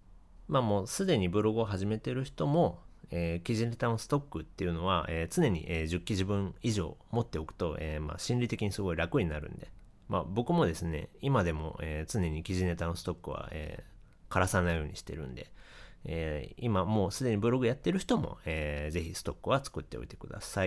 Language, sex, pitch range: Japanese, male, 85-115 Hz